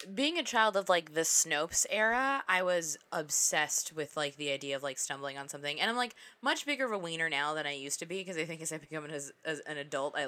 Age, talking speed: 20-39, 270 wpm